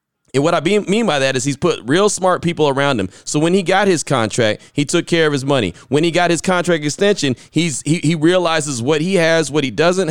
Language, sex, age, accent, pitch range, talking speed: English, male, 30-49, American, 135-170 Hz, 250 wpm